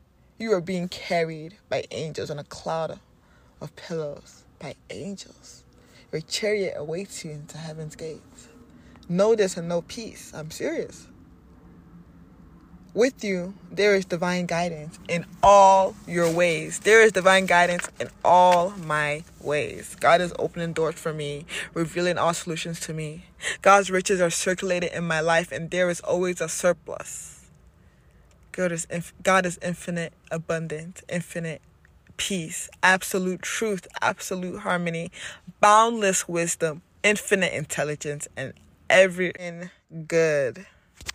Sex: female